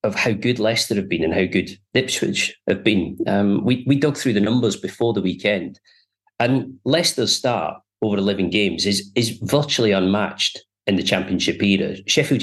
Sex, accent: male, British